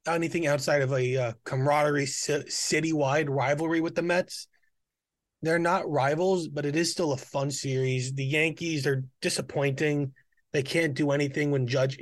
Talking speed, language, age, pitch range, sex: 155 wpm, English, 20-39, 130-150 Hz, male